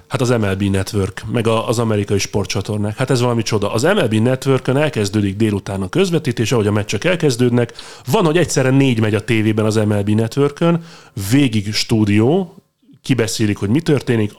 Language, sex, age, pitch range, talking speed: Hungarian, male, 30-49, 105-130 Hz, 165 wpm